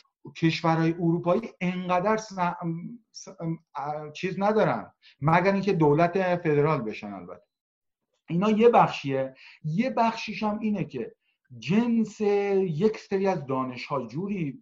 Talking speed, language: 105 wpm, Persian